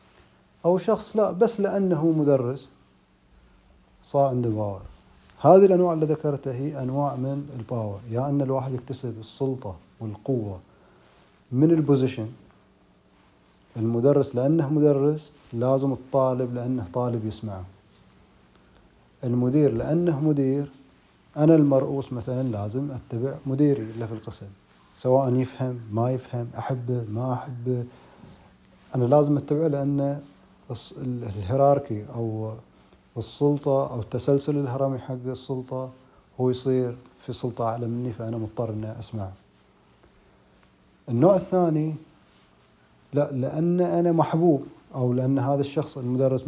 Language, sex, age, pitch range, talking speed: Arabic, male, 30-49, 115-140 Hz, 110 wpm